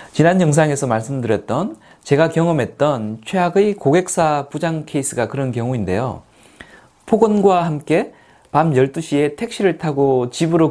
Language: Korean